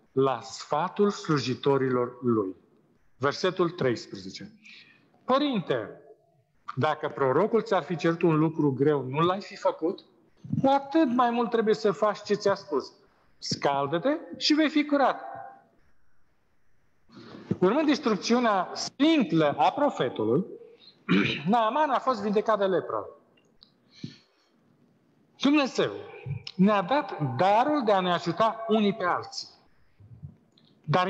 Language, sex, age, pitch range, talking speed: Romanian, male, 50-69, 175-265 Hz, 110 wpm